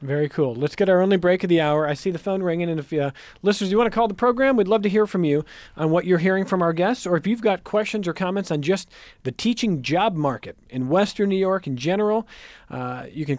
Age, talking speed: 40-59, 270 wpm